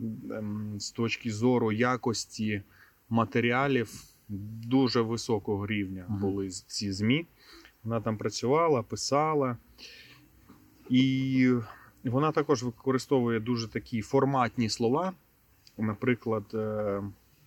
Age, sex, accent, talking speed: 30-49, male, native, 80 wpm